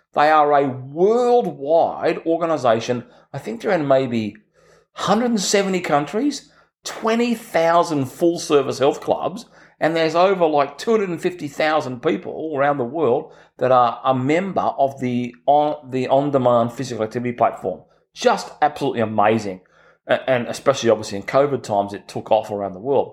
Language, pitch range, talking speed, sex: English, 125-175 Hz, 140 wpm, male